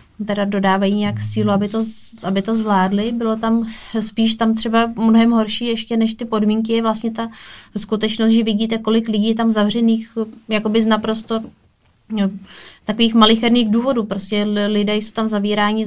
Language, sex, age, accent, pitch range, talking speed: Czech, female, 20-39, native, 200-225 Hz, 155 wpm